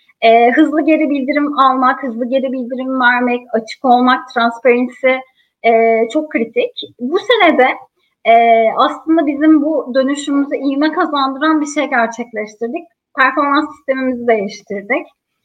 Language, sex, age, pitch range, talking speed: Turkish, female, 30-49, 240-295 Hz, 120 wpm